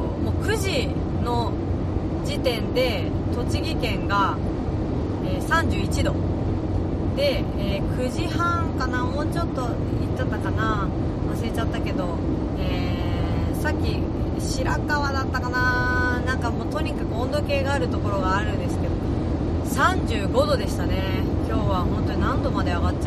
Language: Japanese